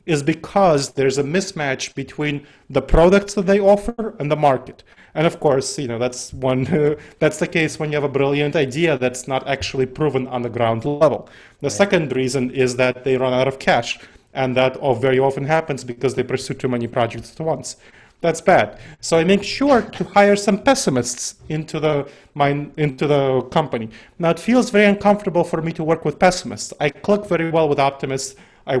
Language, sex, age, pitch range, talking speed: English, male, 30-49, 130-170 Hz, 200 wpm